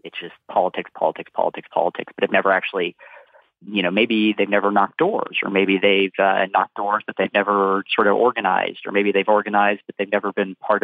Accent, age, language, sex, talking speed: American, 30-49, English, male, 215 wpm